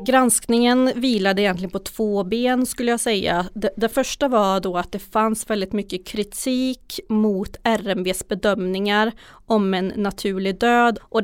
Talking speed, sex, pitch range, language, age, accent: 150 wpm, female, 205-235 Hz, Swedish, 30-49, native